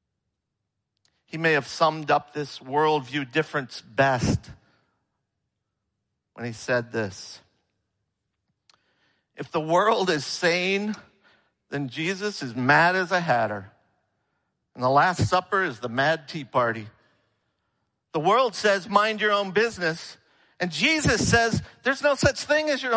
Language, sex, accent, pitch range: English, male, American, 120-190 Hz